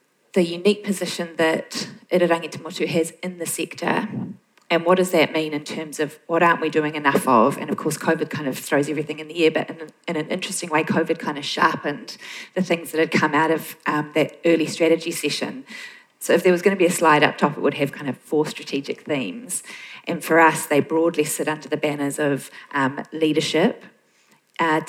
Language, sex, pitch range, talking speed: English, female, 150-170 Hz, 210 wpm